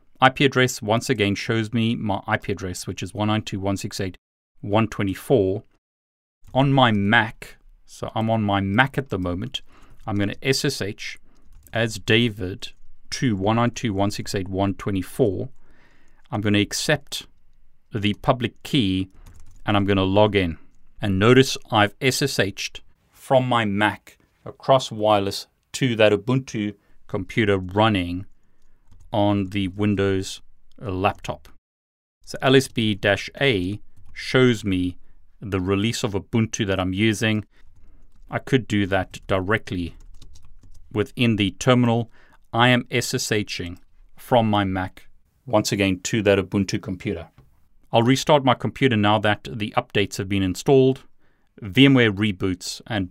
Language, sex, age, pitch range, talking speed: English, male, 40-59, 95-115 Hz, 115 wpm